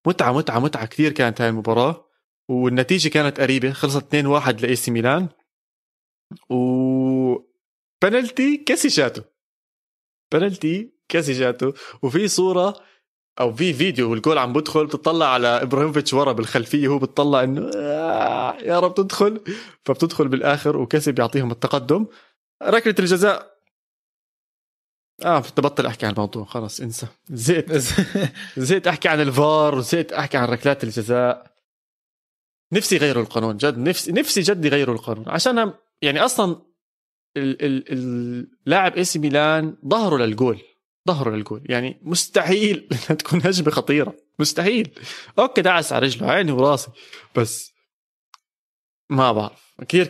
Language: Arabic